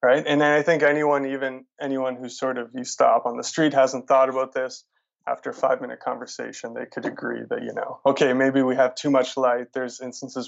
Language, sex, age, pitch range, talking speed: English, male, 20-39, 125-145 Hz, 230 wpm